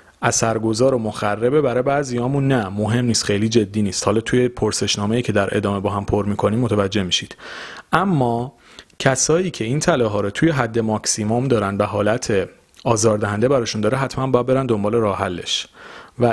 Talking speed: 165 wpm